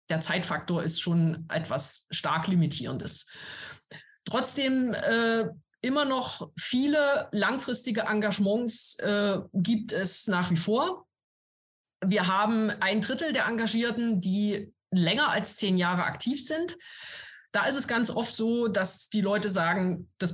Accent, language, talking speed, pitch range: German, German, 130 wpm, 185-235 Hz